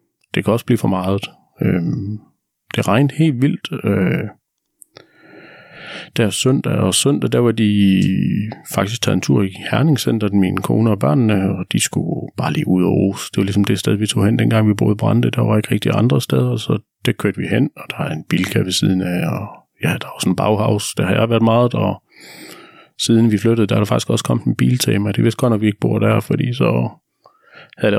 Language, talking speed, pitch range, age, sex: Danish, 230 wpm, 100-130 Hz, 40-59, male